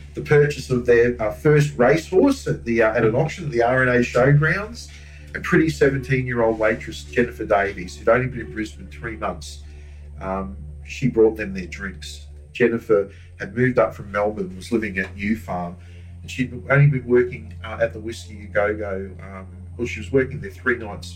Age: 40-59